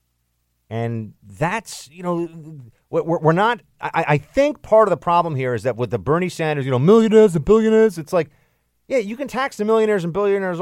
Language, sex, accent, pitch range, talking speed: English, male, American, 115-165 Hz, 190 wpm